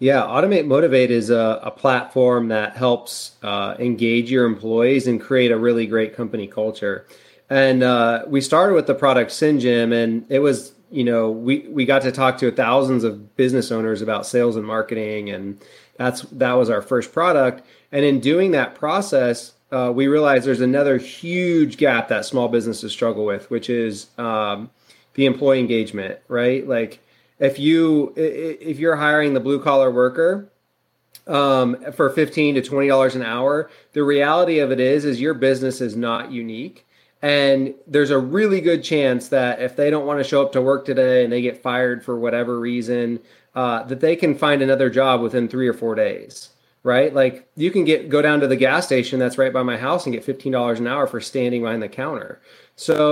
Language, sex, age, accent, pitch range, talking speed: English, male, 30-49, American, 120-140 Hz, 190 wpm